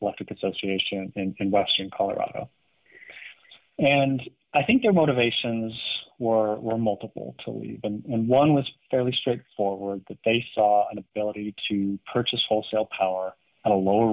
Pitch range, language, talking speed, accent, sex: 100-120 Hz, English, 145 wpm, American, male